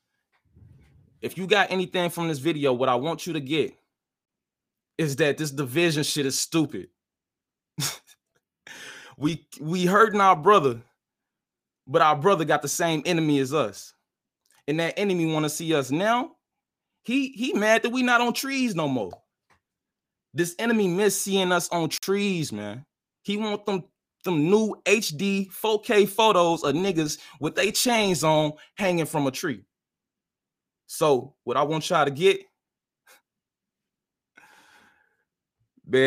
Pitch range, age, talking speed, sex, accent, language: 135-180 Hz, 20-39, 145 wpm, male, American, English